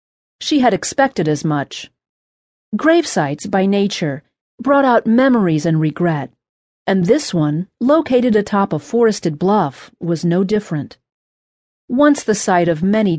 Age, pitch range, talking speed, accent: 40-59, 165-240 Hz, 130 wpm, American